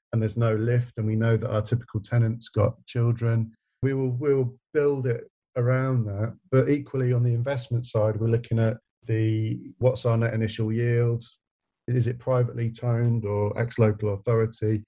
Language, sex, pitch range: English, male, 105-120 Hz